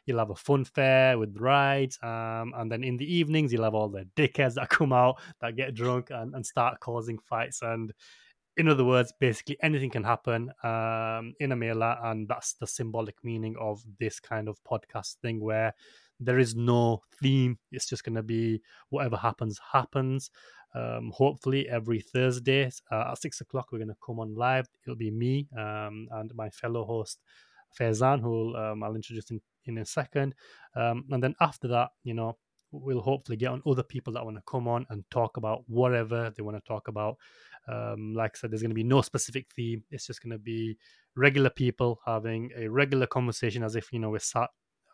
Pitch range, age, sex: 115-130 Hz, 20-39, male